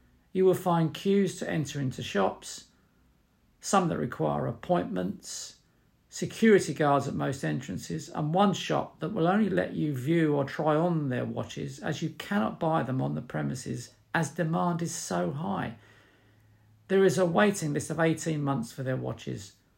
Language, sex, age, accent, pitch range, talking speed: English, male, 50-69, British, 105-175 Hz, 165 wpm